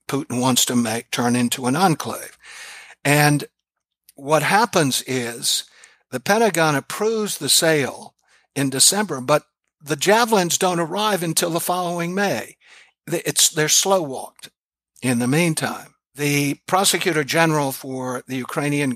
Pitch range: 125-165 Hz